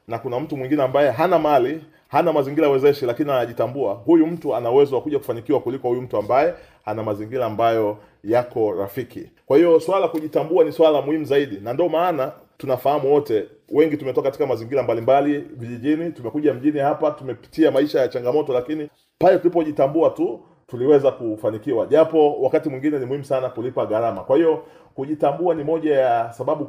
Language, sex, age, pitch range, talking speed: Swahili, male, 30-49, 140-200 Hz, 170 wpm